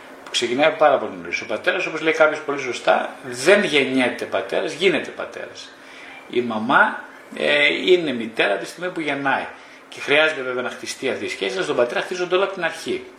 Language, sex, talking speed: Greek, male, 190 wpm